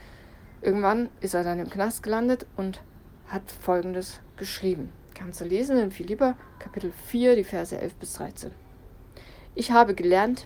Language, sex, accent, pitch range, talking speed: German, female, German, 180-225 Hz, 150 wpm